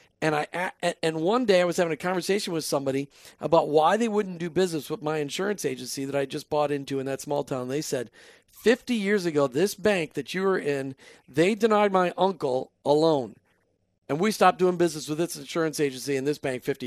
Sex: male